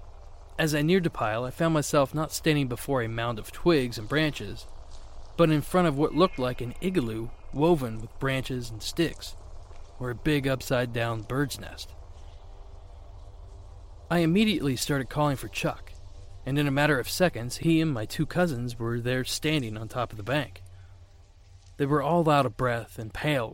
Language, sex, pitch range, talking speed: English, male, 95-165 Hz, 180 wpm